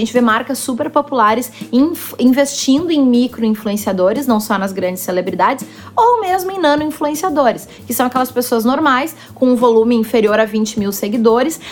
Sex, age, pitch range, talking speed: female, 20-39, 235-300 Hz, 170 wpm